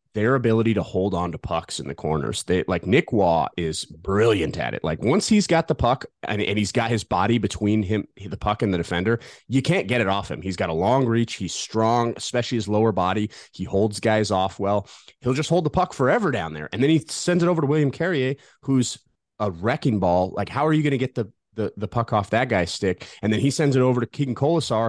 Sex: male